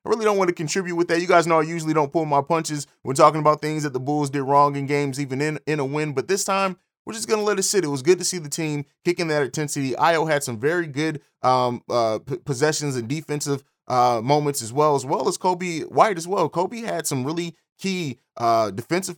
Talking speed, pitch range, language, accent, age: 255 wpm, 125-160 Hz, English, American, 20-39